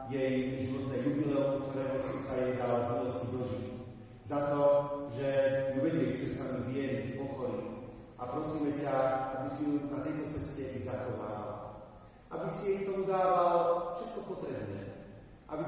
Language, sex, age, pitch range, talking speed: Slovak, male, 40-59, 115-135 Hz, 150 wpm